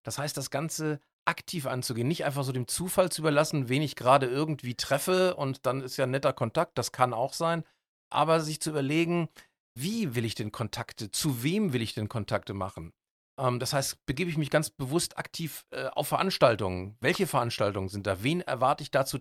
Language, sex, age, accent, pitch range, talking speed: German, male, 40-59, German, 125-160 Hz, 200 wpm